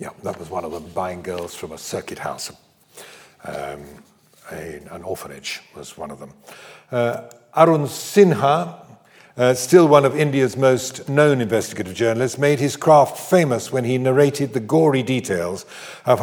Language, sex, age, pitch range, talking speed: English, male, 50-69, 110-145 Hz, 155 wpm